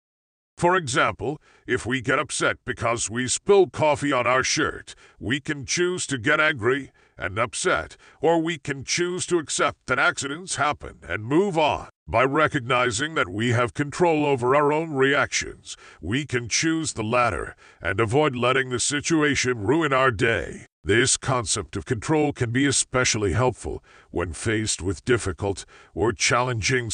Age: 50-69